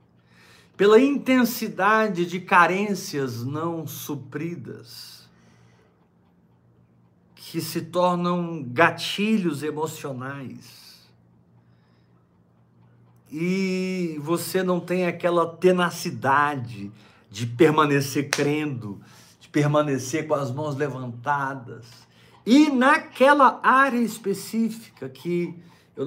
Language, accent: Portuguese, Brazilian